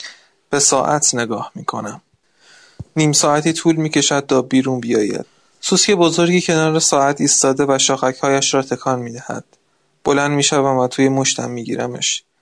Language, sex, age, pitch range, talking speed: Persian, male, 20-39, 130-150 Hz, 130 wpm